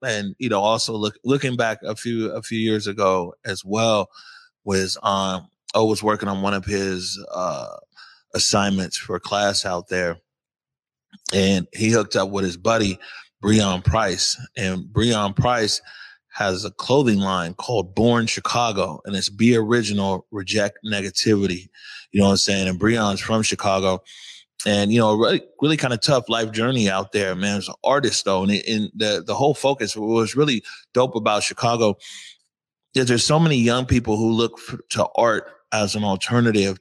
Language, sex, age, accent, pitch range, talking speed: English, male, 30-49, American, 95-115 Hz, 175 wpm